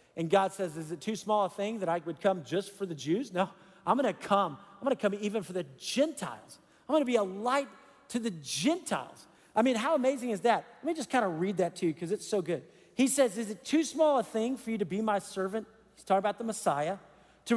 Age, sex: 50-69, male